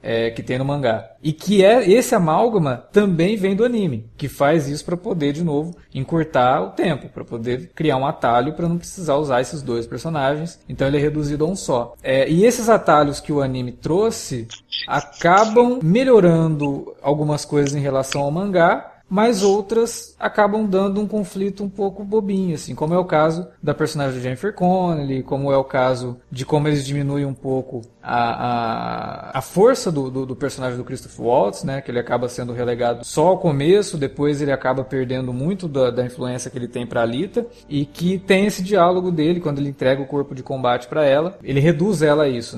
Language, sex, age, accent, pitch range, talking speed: Portuguese, male, 20-39, Brazilian, 125-180 Hz, 200 wpm